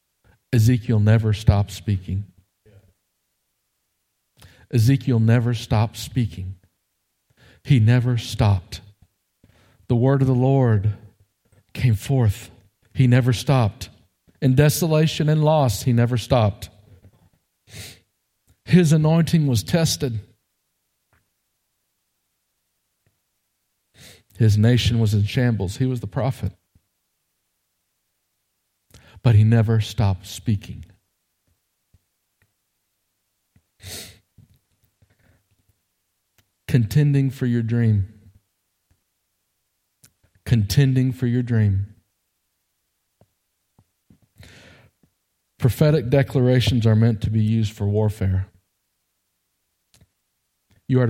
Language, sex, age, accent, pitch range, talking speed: English, male, 50-69, American, 95-120 Hz, 75 wpm